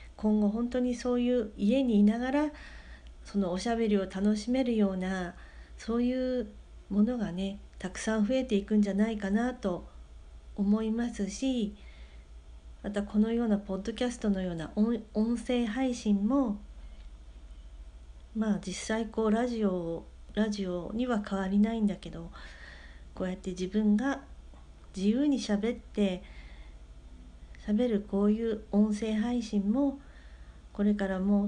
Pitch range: 180-230 Hz